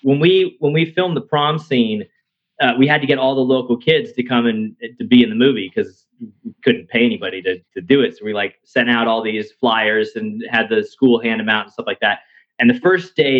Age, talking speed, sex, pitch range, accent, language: 30-49, 255 wpm, male, 120-160 Hz, American, English